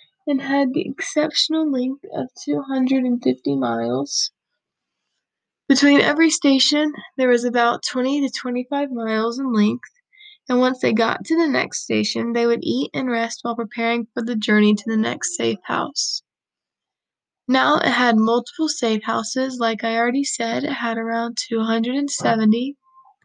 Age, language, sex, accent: 20-39, English, female, American